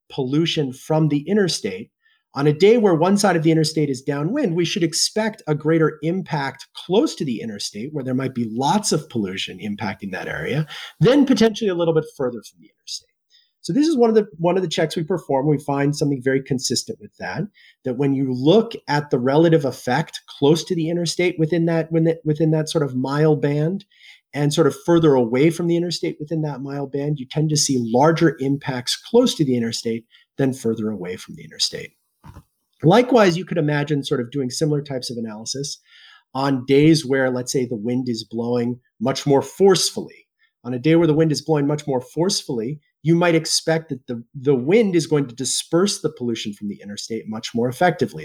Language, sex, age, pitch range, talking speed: English, male, 40-59, 130-170 Hz, 205 wpm